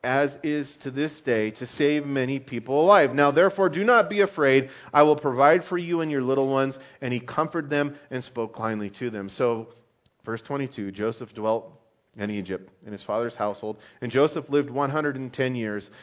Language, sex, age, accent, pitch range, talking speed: English, male, 40-59, American, 115-145 Hz, 185 wpm